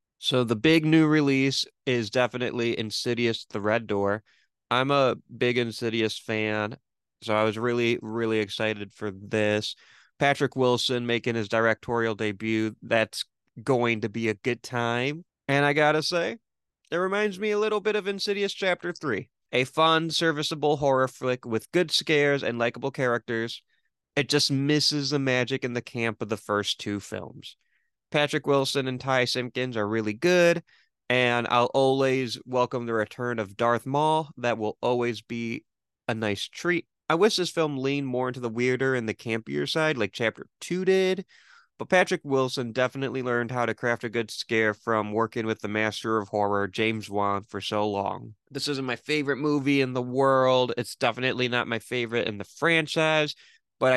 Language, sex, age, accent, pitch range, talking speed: English, male, 20-39, American, 110-140 Hz, 175 wpm